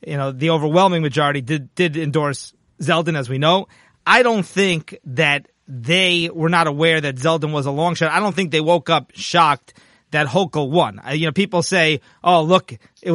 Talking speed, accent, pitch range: 200 wpm, American, 155-185 Hz